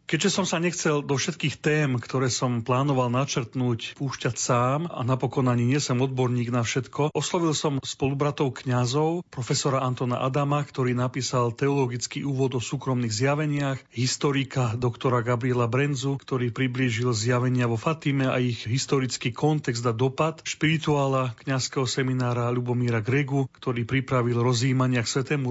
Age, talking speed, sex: 40-59, 140 wpm, male